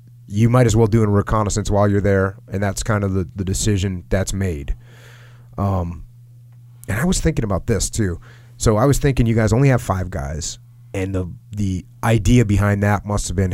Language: English